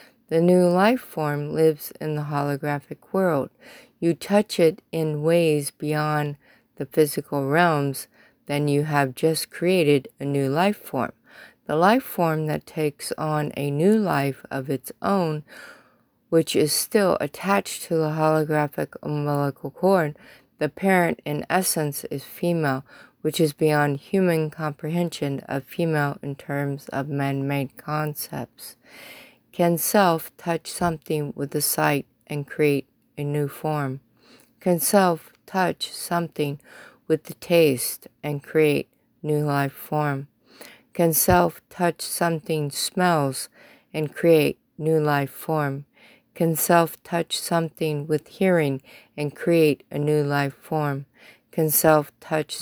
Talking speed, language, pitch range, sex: 130 wpm, English, 145-170 Hz, female